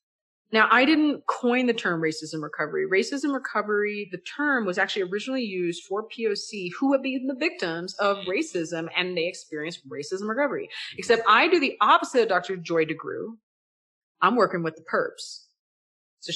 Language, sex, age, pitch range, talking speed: English, female, 30-49, 170-230 Hz, 165 wpm